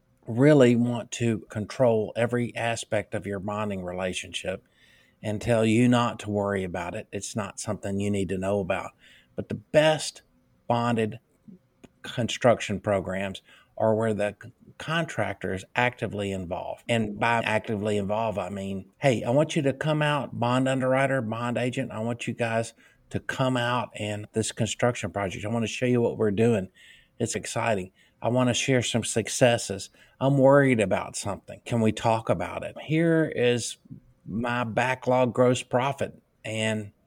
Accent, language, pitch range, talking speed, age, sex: American, English, 105-125 Hz, 160 wpm, 50-69, male